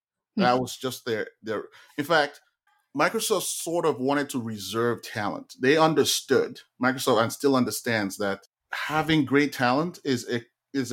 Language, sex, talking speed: English, male, 150 wpm